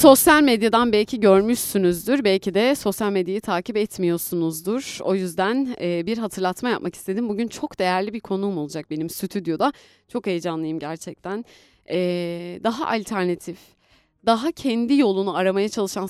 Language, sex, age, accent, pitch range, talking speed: Turkish, female, 30-49, native, 170-225 Hz, 125 wpm